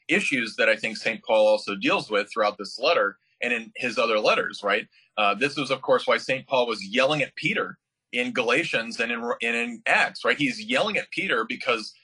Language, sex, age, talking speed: English, male, 30-49, 210 wpm